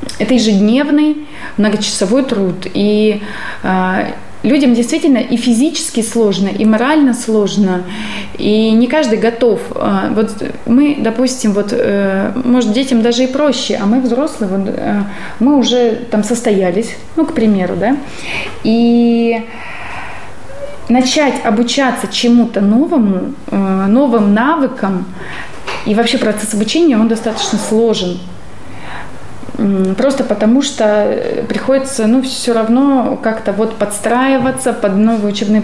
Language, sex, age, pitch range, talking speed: Russian, female, 20-39, 210-255 Hz, 110 wpm